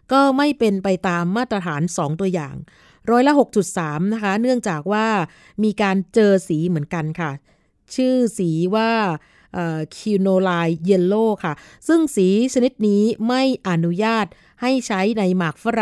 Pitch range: 175-220 Hz